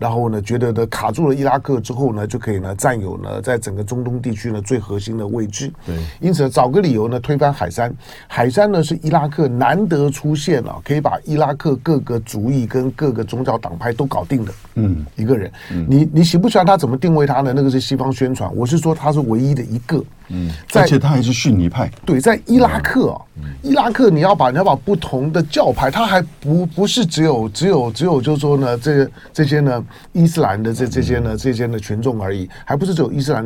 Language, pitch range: Chinese, 115-155 Hz